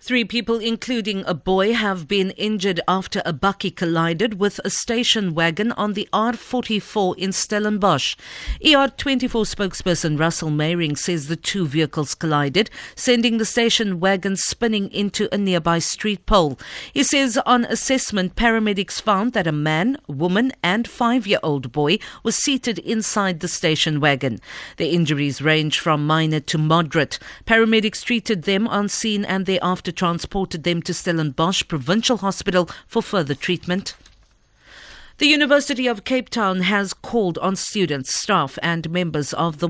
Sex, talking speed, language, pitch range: female, 150 wpm, English, 165-220 Hz